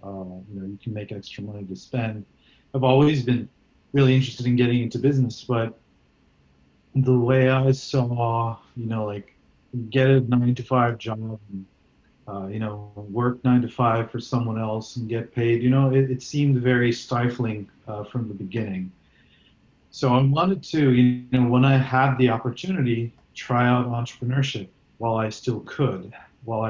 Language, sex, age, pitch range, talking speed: English, male, 40-59, 105-130 Hz, 170 wpm